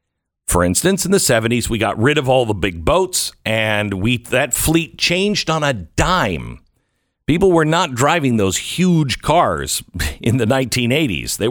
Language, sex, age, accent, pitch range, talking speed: English, male, 50-69, American, 85-120 Hz, 165 wpm